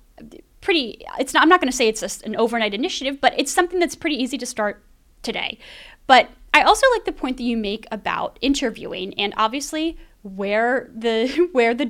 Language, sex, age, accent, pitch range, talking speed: English, female, 10-29, American, 205-265 Hz, 195 wpm